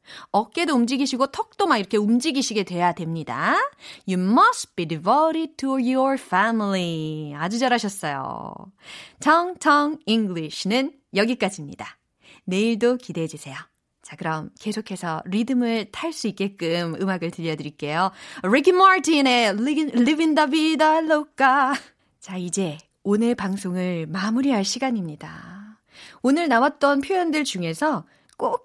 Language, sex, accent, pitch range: Korean, female, native, 175-275 Hz